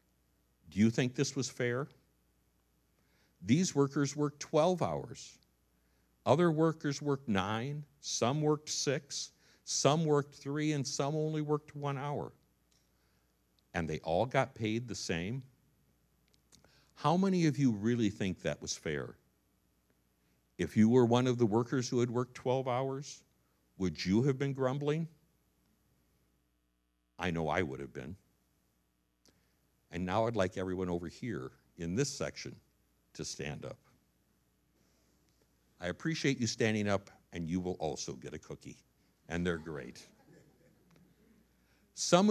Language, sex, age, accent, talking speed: English, male, 60-79, American, 135 wpm